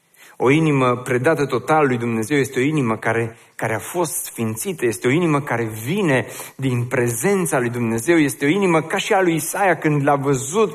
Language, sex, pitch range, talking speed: Romanian, male, 145-190 Hz, 190 wpm